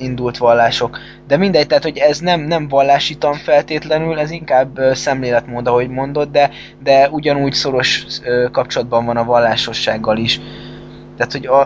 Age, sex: 20-39, male